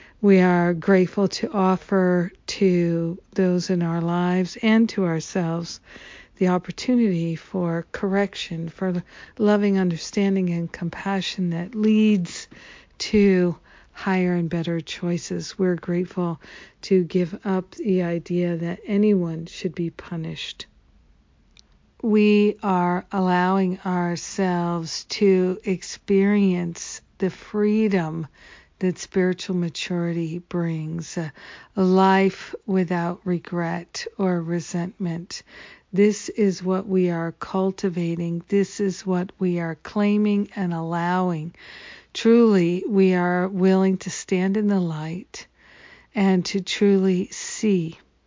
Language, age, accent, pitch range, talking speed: English, 60-79, American, 170-195 Hz, 105 wpm